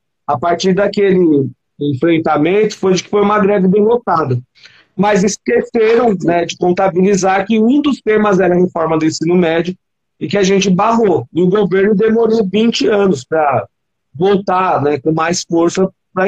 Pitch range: 160-210 Hz